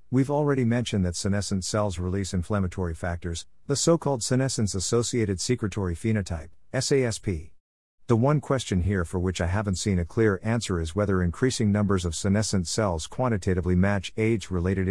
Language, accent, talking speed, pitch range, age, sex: English, American, 150 wpm, 90-110 Hz, 50-69, male